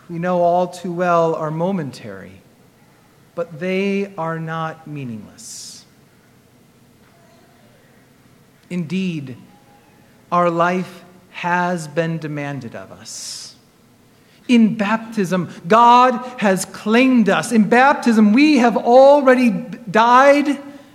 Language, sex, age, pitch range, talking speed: English, male, 40-59, 180-245 Hz, 90 wpm